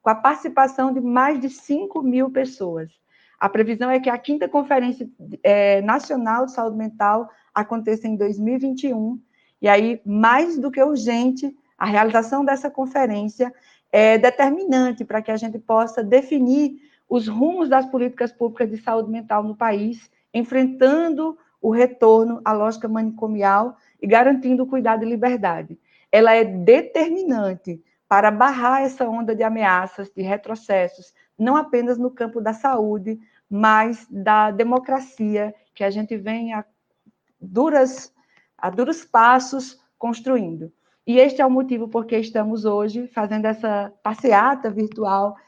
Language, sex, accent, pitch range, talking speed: Portuguese, female, Brazilian, 215-260 Hz, 140 wpm